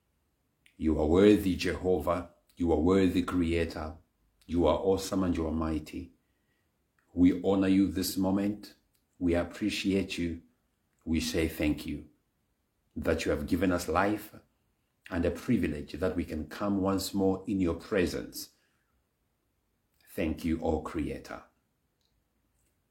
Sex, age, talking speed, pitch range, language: male, 60-79, 130 wpm, 80-95 Hz, English